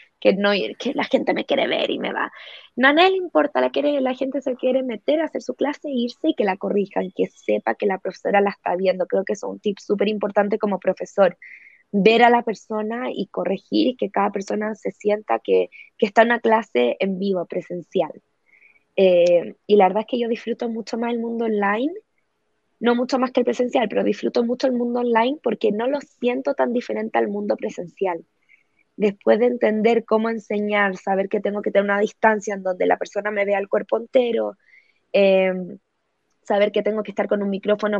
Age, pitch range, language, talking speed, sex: 20-39, 195-245 Hz, Spanish, 210 wpm, female